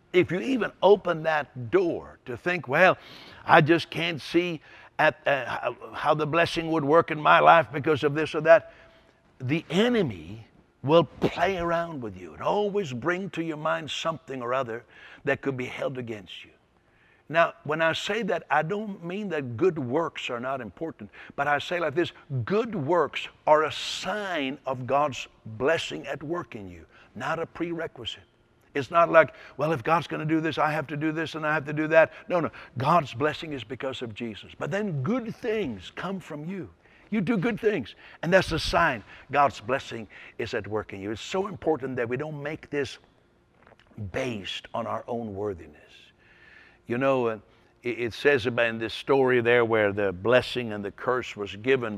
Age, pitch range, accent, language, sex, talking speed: 60-79, 115-165 Hz, American, English, male, 190 wpm